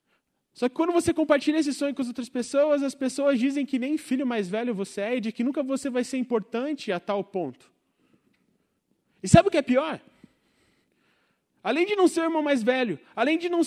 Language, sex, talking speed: Portuguese, male, 215 wpm